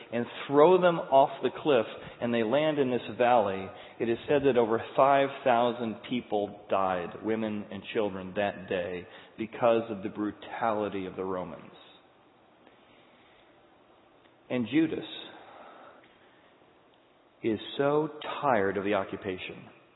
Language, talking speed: English, 120 wpm